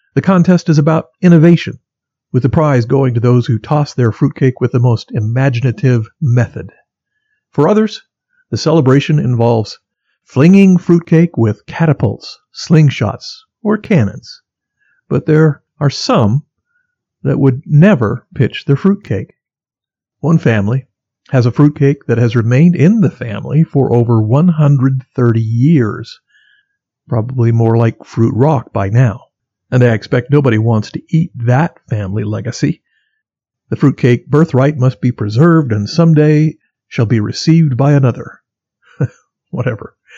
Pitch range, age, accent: 120-160 Hz, 50-69, American